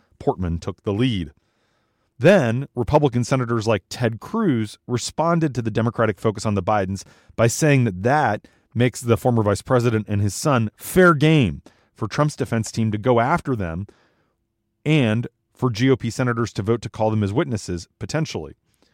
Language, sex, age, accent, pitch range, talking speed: English, male, 30-49, American, 105-130 Hz, 165 wpm